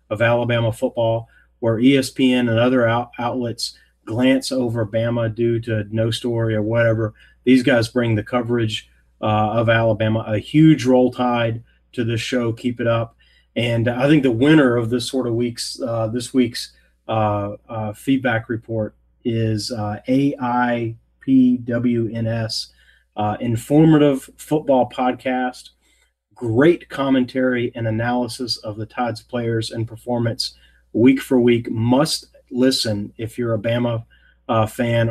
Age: 30-49